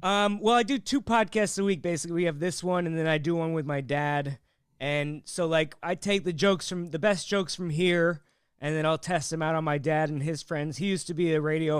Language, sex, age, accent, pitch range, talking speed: English, male, 20-39, American, 145-175 Hz, 265 wpm